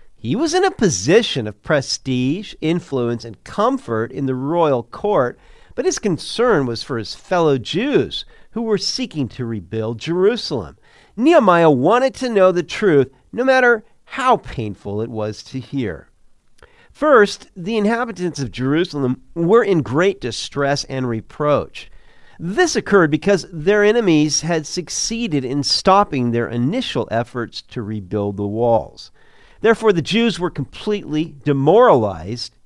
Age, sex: 50-69, male